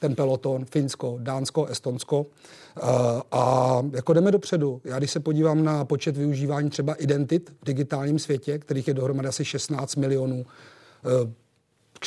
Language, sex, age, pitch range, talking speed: Czech, male, 40-59, 135-150 Hz, 140 wpm